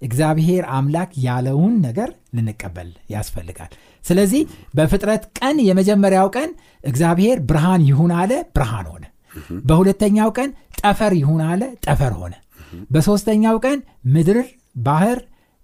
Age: 60-79